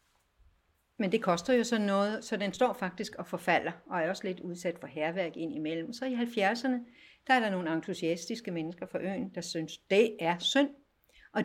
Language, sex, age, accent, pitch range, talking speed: Danish, female, 60-79, native, 175-230 Hz, 195 wpm